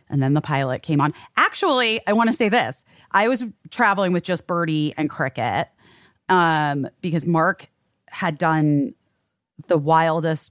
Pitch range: 140-175 Hz